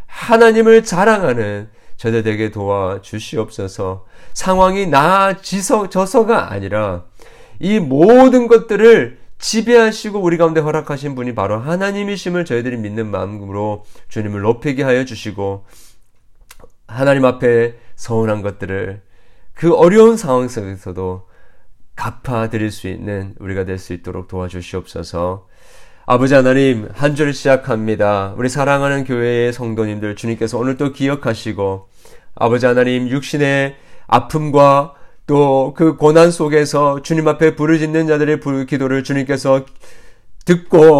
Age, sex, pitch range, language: 40-59, male, 110-155 Hz, Korean